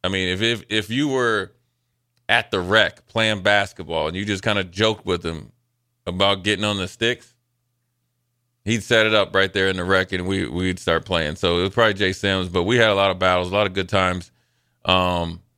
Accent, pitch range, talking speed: American, 95-120 Hz, 215 wpm